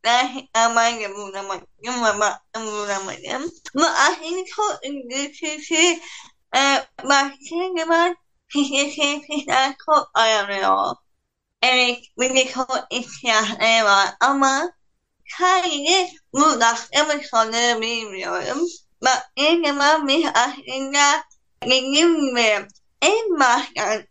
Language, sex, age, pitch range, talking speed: Turkish, female, 10-29, 230-300 Hz, 35 wpm